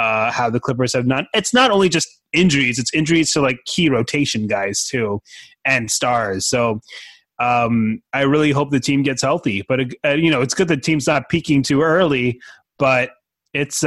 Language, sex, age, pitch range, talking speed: English, male, 20-39, 120-150 Hz, 190 wpm